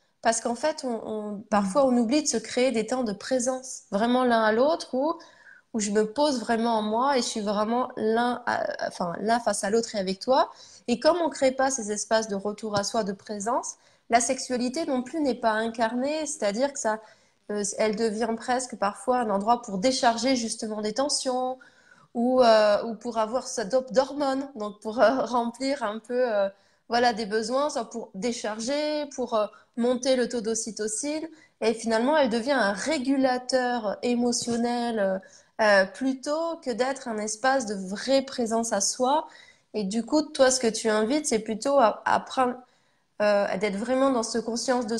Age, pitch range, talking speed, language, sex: 20-39, 215-260 Hz, 190 wpm, French, female